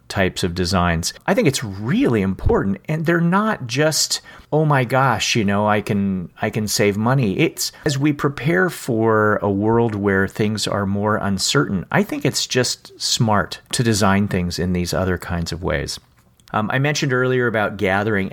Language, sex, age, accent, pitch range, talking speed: English, male, 40-59, American, 90-120 Hz, 180 wpm